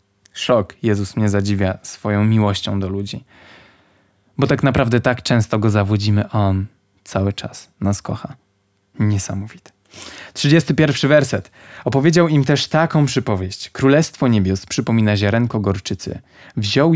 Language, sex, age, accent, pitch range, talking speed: Polish, male, 20-39, native, 100-140 Hz, 120 wpm